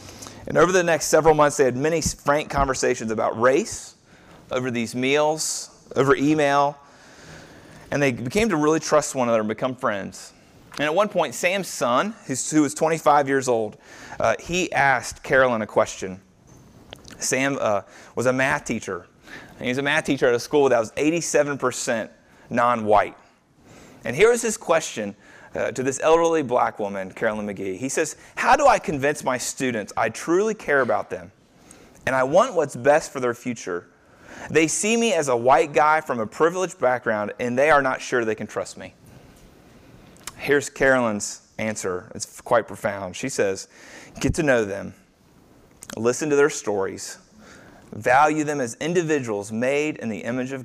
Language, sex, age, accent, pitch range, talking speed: English, male, 30-49, American, 115-155 Hz, 170 wpm